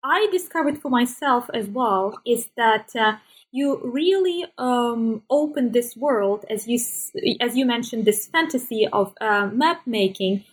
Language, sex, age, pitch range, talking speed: English, female, 20-39, 215-275 Hz, 150 wpm